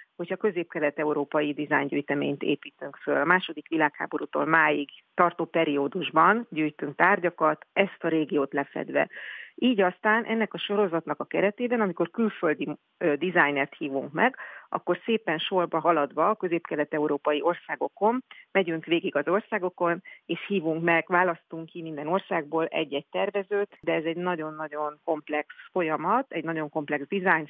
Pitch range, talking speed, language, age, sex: 155-205 Hz, 135 wpm, Hungarian, 40-59, female